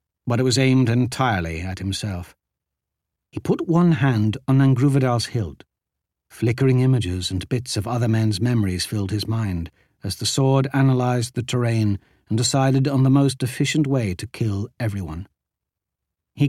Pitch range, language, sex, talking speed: 100-140 Hz, English, male, 155 wpm